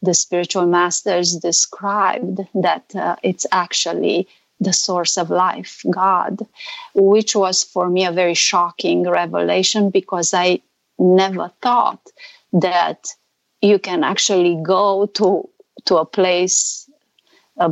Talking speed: 120 wpm